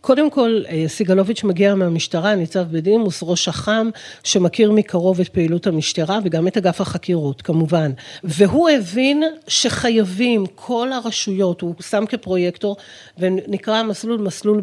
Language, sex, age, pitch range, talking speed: Hebrew, female, 40-59, 185-230 Hz, 125 wpm